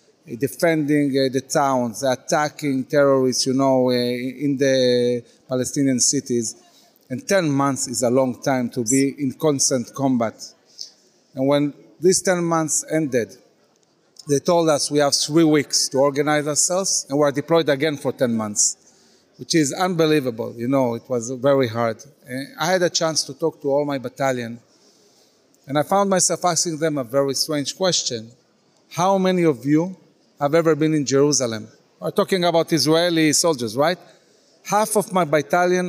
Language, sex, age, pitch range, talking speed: English, male, 40-59, 130-160 Hz, 160 wpm